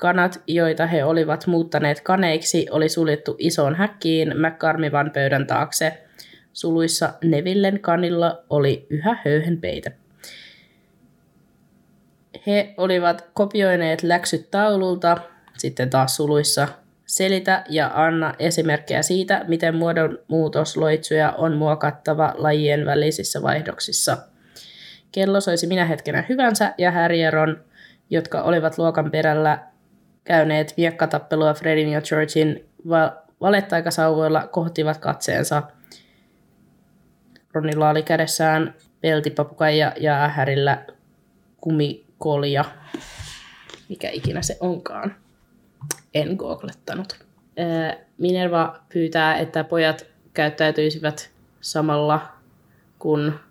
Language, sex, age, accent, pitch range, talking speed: Finnish, female, 20-39, native, 150-170 Hz, 85 wpm